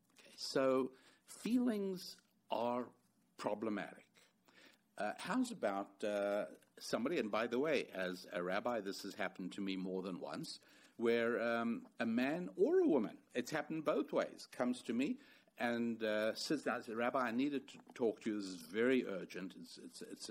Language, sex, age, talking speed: English, male, 60-79, 165 wpm